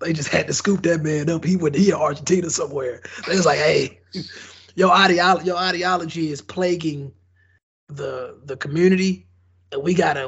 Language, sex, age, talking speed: English, male, 20-39, 165 wpm